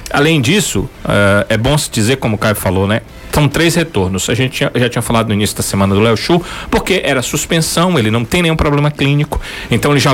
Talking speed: 225 wpm